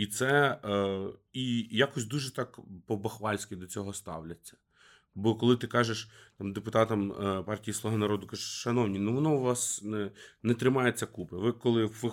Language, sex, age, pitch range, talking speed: Ukrainian, male, 30-49, 105-125 Hz, 170 wpm